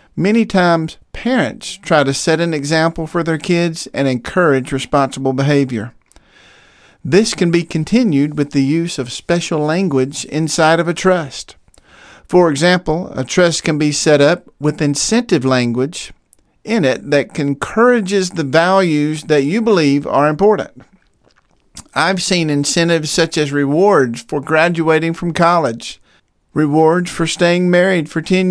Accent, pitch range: American, 140-180 Hz